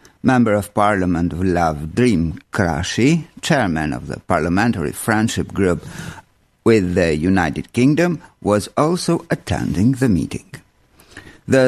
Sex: male